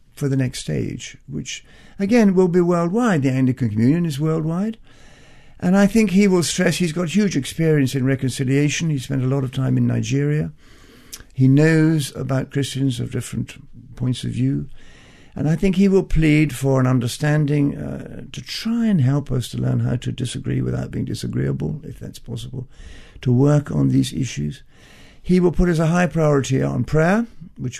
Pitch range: 120-155 Hz